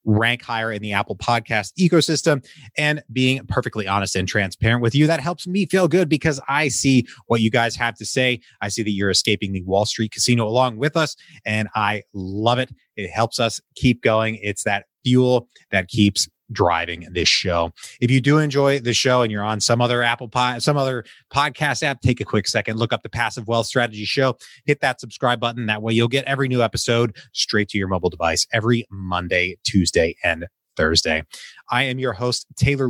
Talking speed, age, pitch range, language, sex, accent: 205 wpm, 30-49, 105-130 Hz, English, male, American